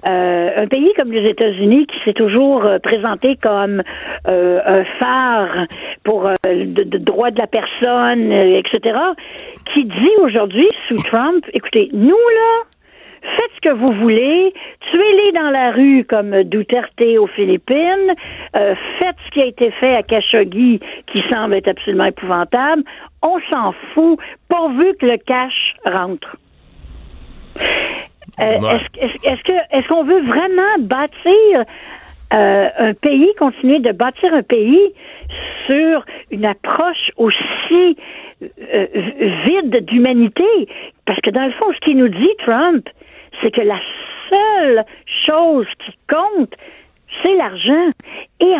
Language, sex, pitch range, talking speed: French, female, 225-345 Hz, 135 wpm